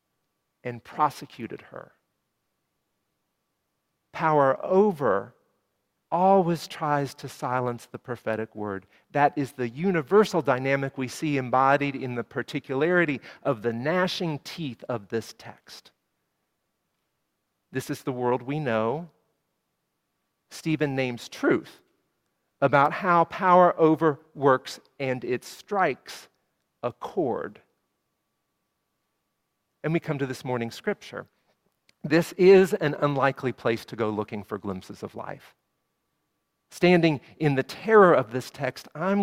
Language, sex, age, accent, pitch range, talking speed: English, male, 50-69, American, 130-175 Hz, 115 wpm